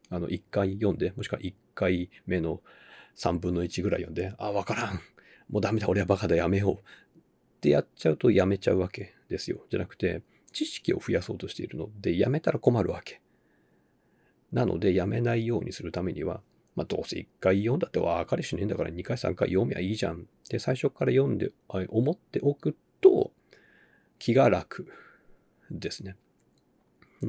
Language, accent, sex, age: Japanese, native, male, 40-59